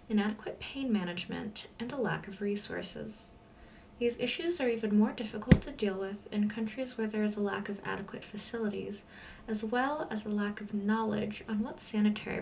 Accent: American